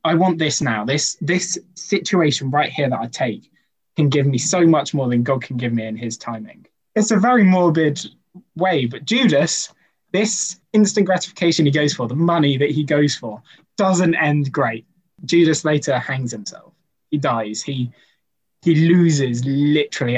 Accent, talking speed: British, 170 wpm